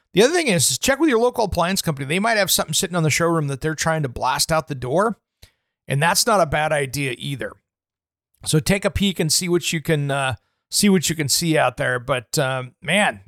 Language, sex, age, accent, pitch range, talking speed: English, male, 40-59, American, 150-185 Hz, 245 wpm